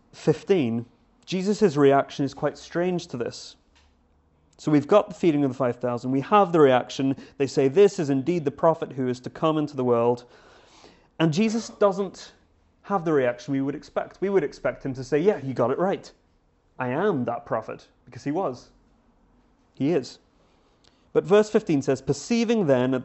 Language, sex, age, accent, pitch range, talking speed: English, male, 30-49, British, 125-165 Hz, 180 wpm